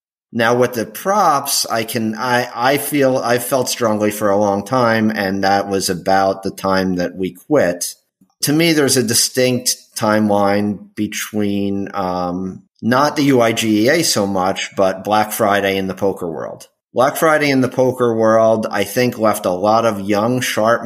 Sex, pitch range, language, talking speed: male, 95-115 Hz, English, 170 wpm